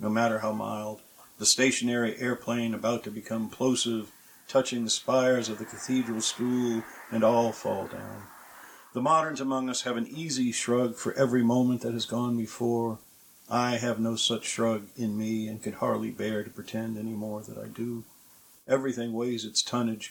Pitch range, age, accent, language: 110-120 Hz, 50-69, American, English